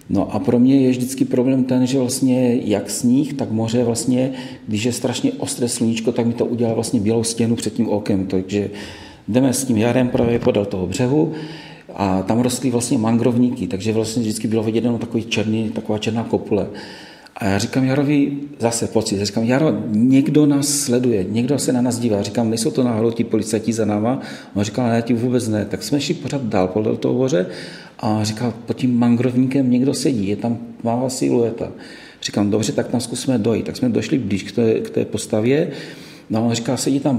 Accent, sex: native, male